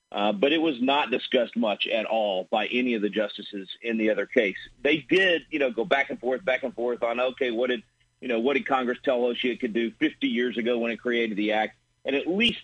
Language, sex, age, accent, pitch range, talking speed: English, male, 40-59, American, 110-140 Hz, 250 wpm